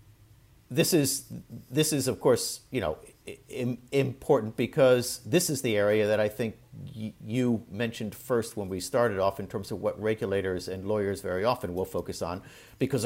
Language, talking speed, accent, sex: English, 180 wpm, American, male